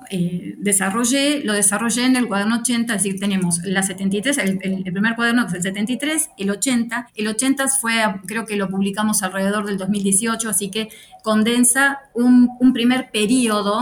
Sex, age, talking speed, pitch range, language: female, 20-39, 170 wpm, 195-235 Hz, English